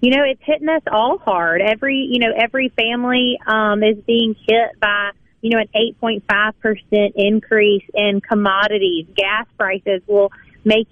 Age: 30-49